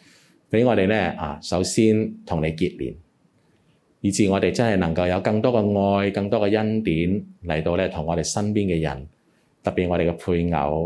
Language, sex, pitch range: Chinese, male, 80-100 Hz